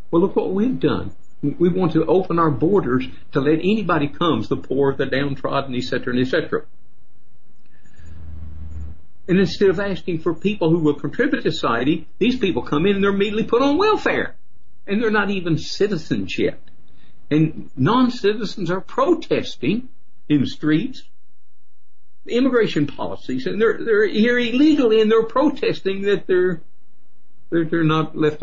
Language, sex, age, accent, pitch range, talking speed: English, male, 60-79, American, 135-200 Hz, 150 wpm